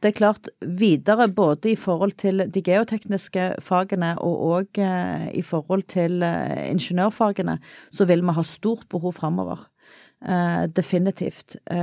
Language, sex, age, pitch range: English, female, 40-59, 175-220 Hz